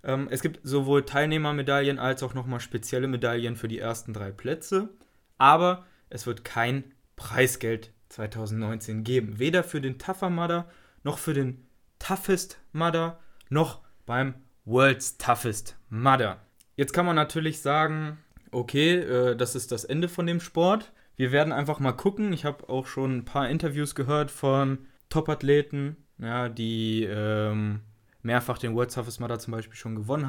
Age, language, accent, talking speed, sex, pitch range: 20-39, German, German, 155 wpm, male, 120-145 Hz